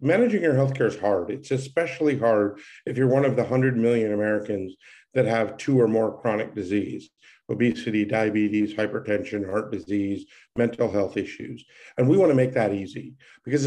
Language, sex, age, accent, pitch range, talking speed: English, male, 50-69, American, 115-145 Hz, 170 wpm